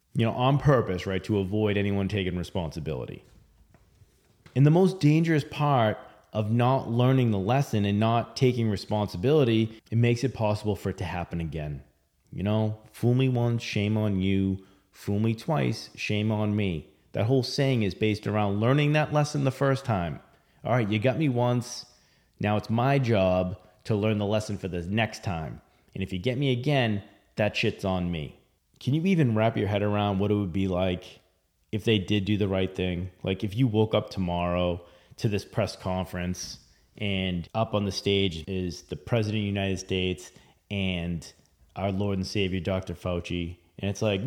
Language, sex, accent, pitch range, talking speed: English, male, American, 95-125 Hz, 185 wpm